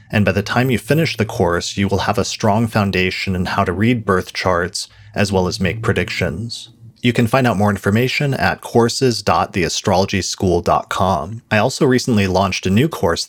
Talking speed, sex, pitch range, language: 180 wpm, male, 95-115 Hz, English